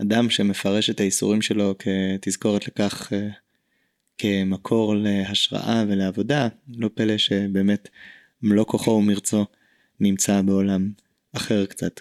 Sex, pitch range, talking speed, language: male, 100-115 Hz, 100 wpm, Hebrew